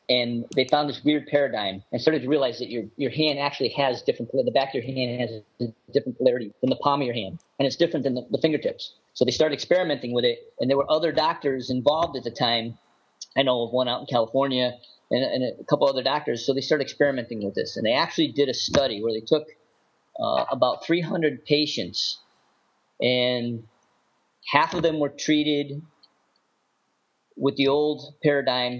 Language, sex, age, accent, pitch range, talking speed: English, male, 40-59, American, 120-150 Hz, 205 wpm